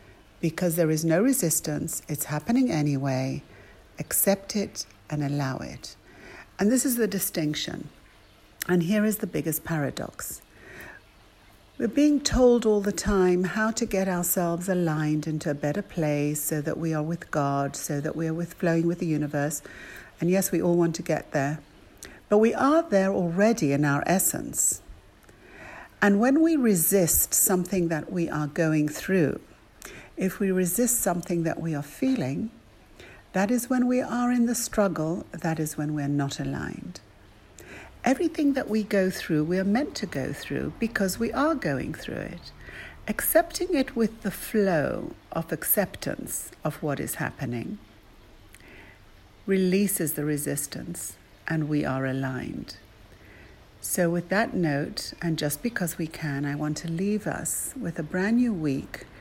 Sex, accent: female, British